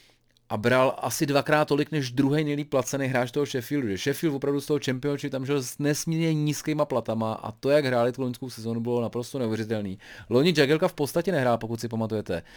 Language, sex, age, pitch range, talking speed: Czech, male, 30-49, 110-130 Hz, 200 wpm